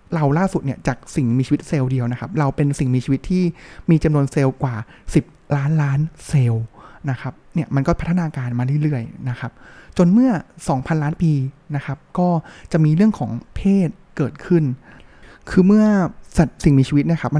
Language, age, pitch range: Thai, 20-39, 130-165 Hz